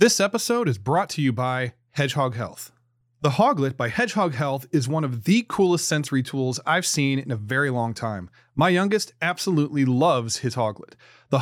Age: 30-49